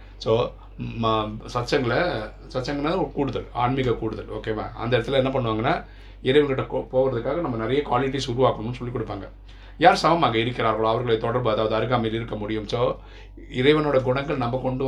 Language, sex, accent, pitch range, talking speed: Tamil, male, native, 110-130 Hz, 140 wpm